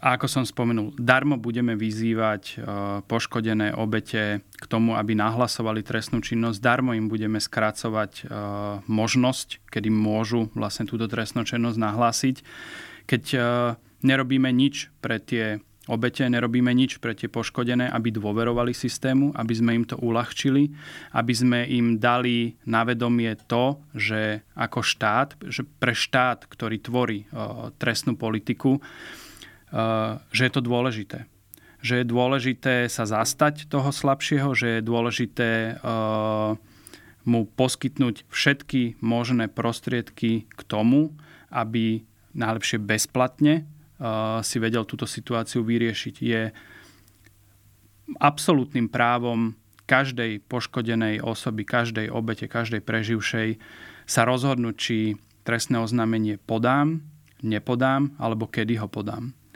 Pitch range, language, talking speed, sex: 110-125 Hz, Slovak, 115 wpm, male